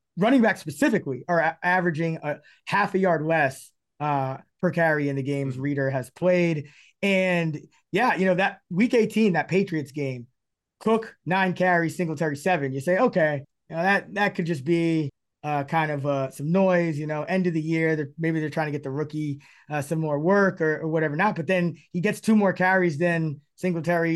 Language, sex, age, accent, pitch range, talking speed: English, male, 20-39, American, 150-185 Hz, 200 wpm